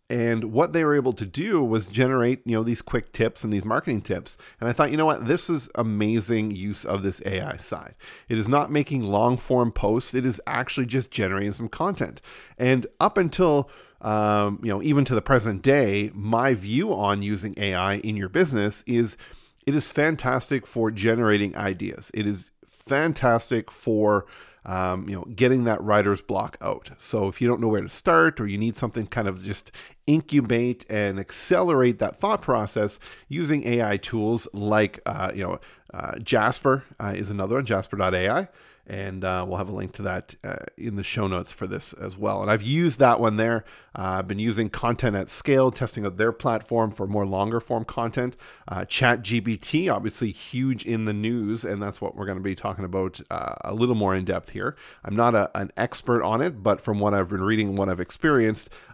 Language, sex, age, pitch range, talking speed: English, male, 40-59, 100-125 Hz, 200 wpm